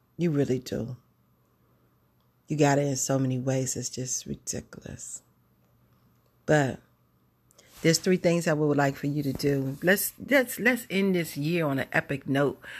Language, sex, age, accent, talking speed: English, female, 40-59, American, 160 wpm